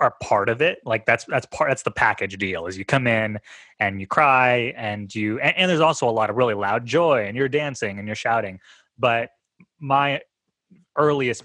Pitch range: 110-135 Hz